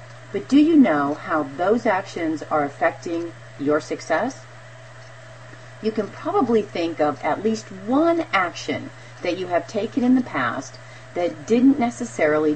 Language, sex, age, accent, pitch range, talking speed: English, female, 40-59, American, 135-230 Hz, 145 wpm